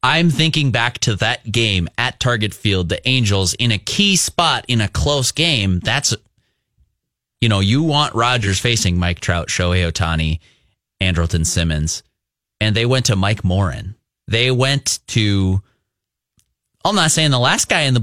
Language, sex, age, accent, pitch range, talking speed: English, male, 30-49, American, 100-130 Hz, 165 wpm